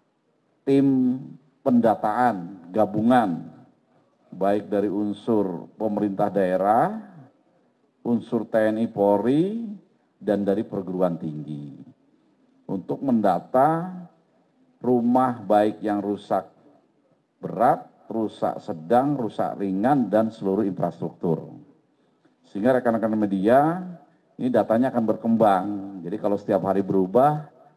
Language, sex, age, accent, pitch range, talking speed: Indonesian, male, 50-69, native, 100-120 Hz, 85 wpm